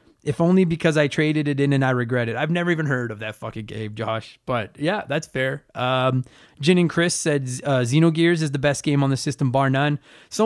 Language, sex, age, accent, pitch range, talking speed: English, male, 20-39, American, 125-160 Hz, 235 wpm